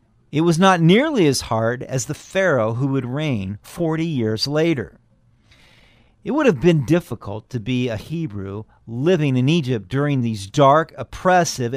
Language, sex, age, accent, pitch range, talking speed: English, male, 50-69, American, 115-175 Hz, 160 wpm